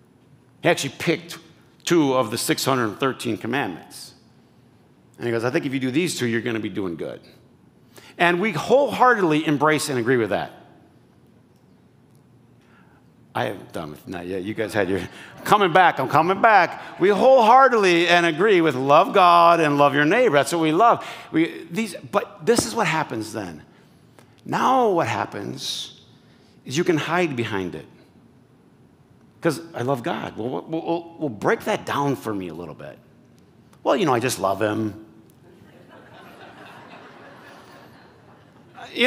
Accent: American